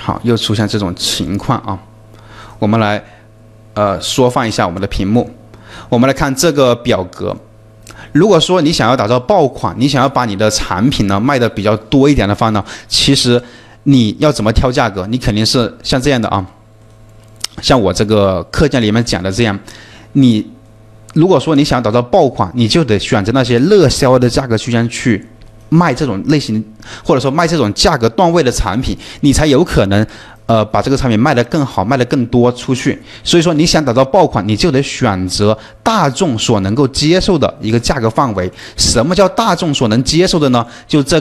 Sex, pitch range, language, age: male, 110-145 Hz, Chinese, 20-39